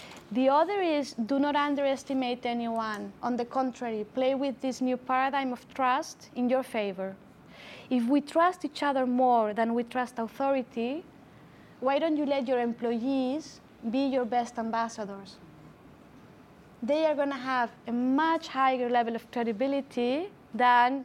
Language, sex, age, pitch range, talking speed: English, female, 20-39, 220-265 Hz, 150 wpm